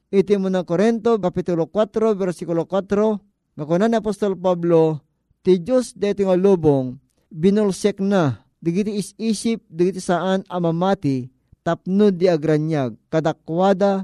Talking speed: 115 wpm